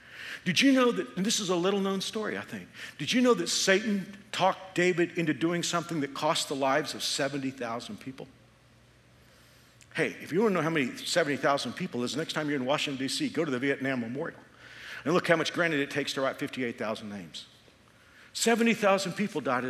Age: 50-69